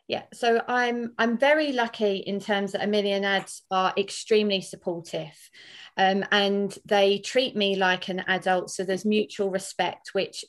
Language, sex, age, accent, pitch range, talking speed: English, female, 30-49, British, 190-220 Hz, 160 wpm